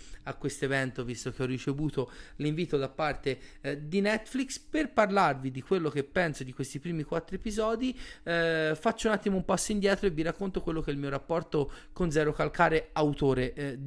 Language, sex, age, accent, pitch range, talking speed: Italian, male, 30-49, native, 135-175 Hz, 195 wpm